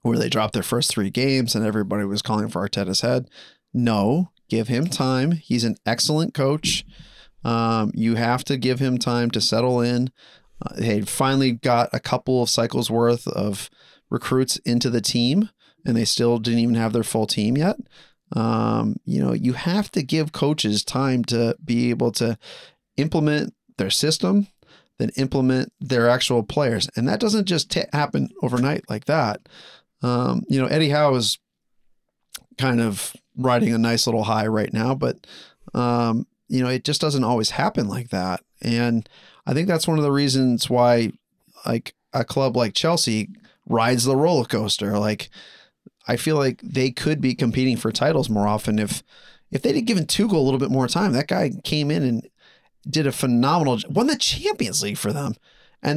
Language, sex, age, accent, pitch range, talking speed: English, male, 30-49, American, 115-150 Hz, 180 wpm